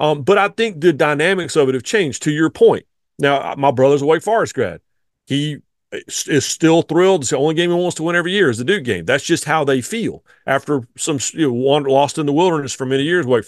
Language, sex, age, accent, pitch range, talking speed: English, male, 40-59, American, 140-170 Hz, 235 wpm